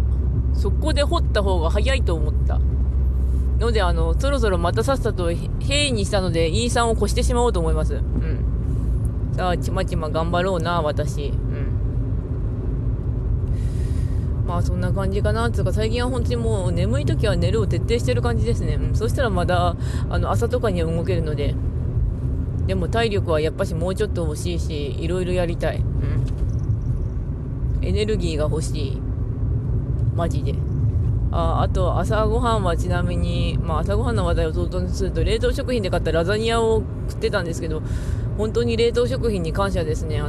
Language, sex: Japanese, female